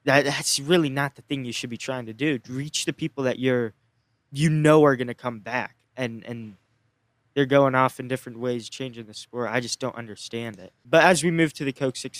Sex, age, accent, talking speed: male, 20-39, American, 230 wpm